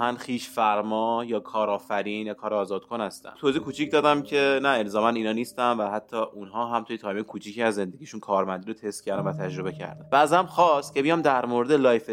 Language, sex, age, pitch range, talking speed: Persian, male, 30-49, 105-125 Hz, 205 wpm